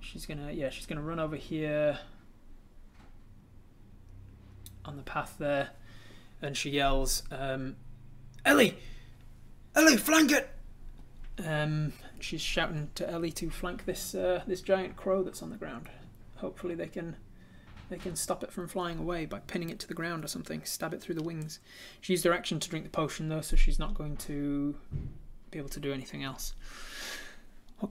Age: 20-39